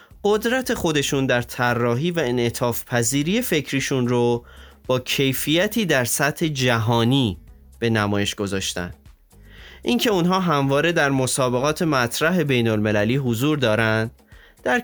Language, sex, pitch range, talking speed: Persian, male, 115-155 Hz, 115 wpm